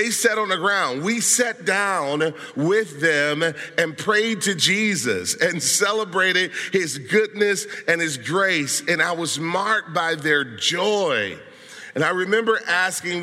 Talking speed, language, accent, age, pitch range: 145 wpm, English, American, 40-59, 155-205 Hz